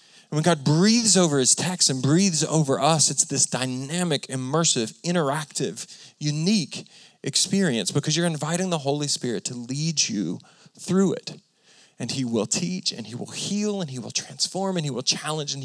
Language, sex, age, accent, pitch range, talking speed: English, male, 40-59, American, 120-175 Hz, 175 wpm